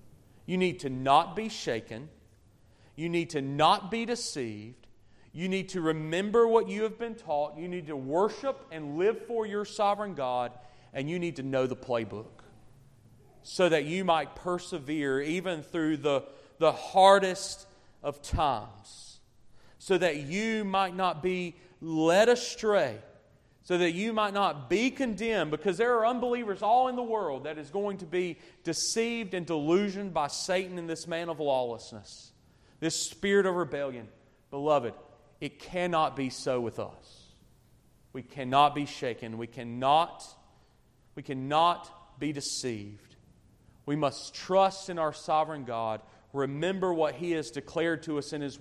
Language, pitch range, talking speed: English, 135-185 Hz, 155 wpm